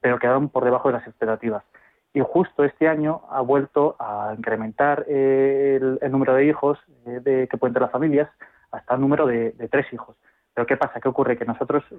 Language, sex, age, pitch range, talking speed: Spanish, male, 20-39, 115-135 Hz, 205 wpm